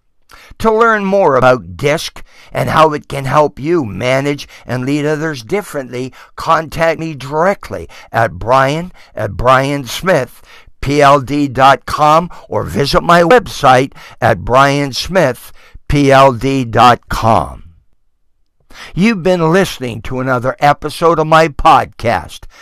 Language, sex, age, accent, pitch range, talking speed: English, male, 60-79, American, 125-160 Hz, 100 wpm